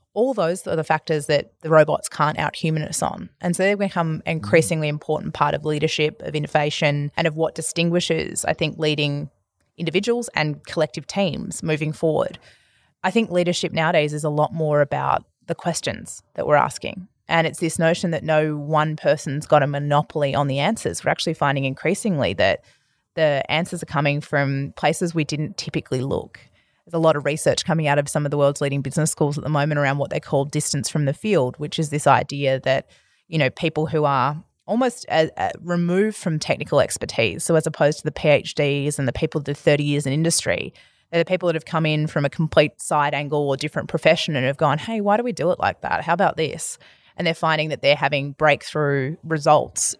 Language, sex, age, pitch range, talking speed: English, female, 20-39, 145-165 Hz, 205 wpm